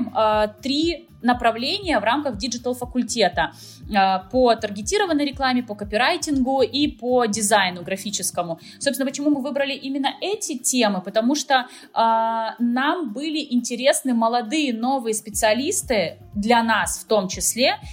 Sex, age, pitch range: female, 20-39, 210-275 Hz